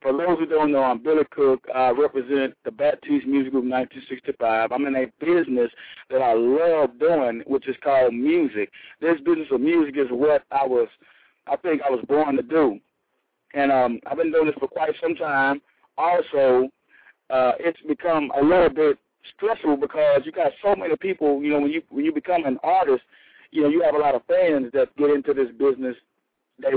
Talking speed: 205 wpm